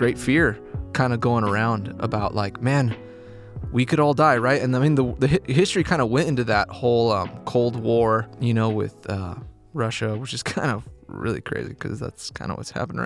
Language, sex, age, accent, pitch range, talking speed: English, male, 20-39, American, 110-135 Hz, 215 wpm